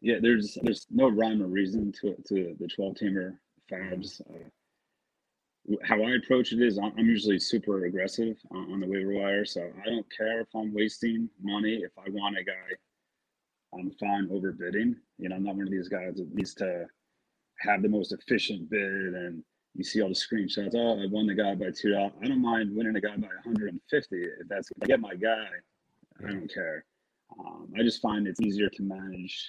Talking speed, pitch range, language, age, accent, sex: 200 wpm, 95-115 Hz, English, 30-49, American, male